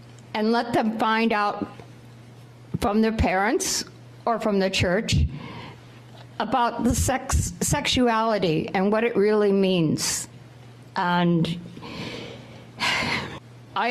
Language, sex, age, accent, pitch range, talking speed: English, female, 60-79, American, 175-225 Hz, 100 wpm